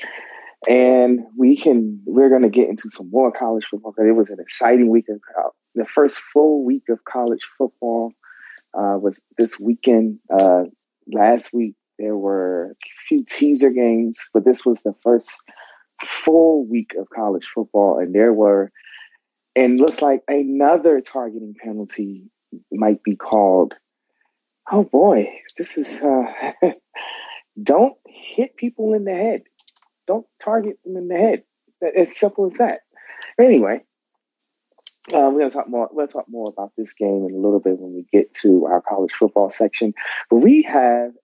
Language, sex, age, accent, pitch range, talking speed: English, male, 30-49, American, 105-170 Hz, 160 wpm